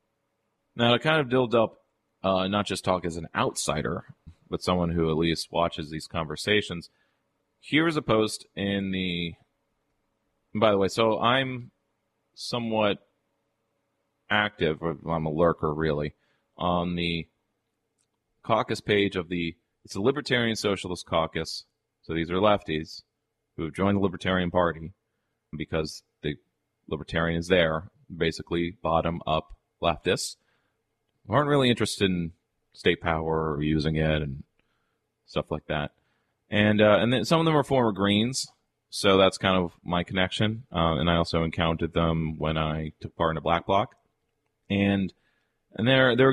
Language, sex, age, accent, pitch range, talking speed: English, male, 30-49, American, 80-110 Hz, 145 wpm